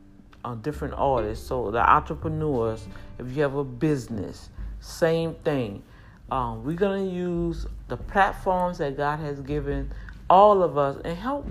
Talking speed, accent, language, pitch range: 145 wpm, American, English, 135-170 Hz